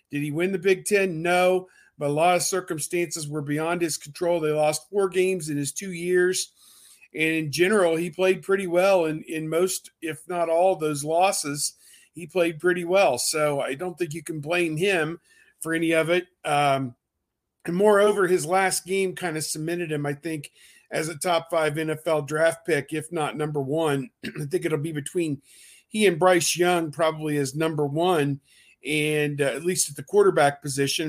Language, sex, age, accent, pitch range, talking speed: English, male, 50-69, American, 145-180 Hz, 195 wpm